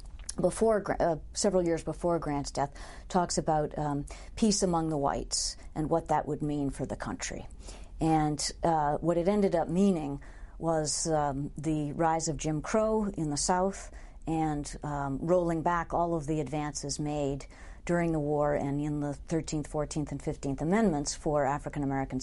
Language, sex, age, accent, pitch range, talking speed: English, female, 50-69, American, 145-170 Hz, 165 wpm